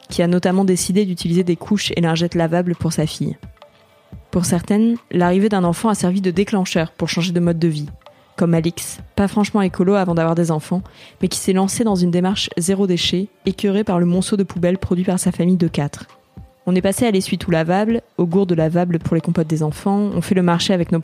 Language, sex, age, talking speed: French, female, 20-39, 225 wpm